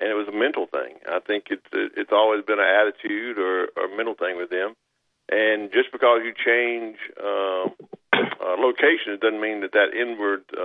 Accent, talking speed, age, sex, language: American, 190 wpm, 50-69, male, English